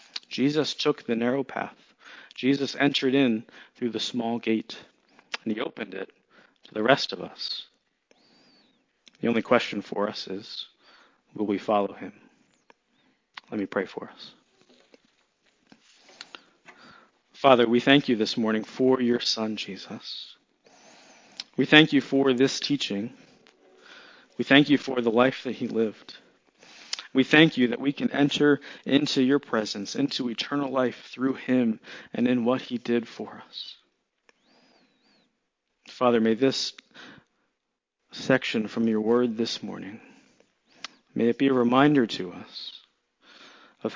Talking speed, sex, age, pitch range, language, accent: 135 wpm, male, 40-59, 115-135 Hz, English, American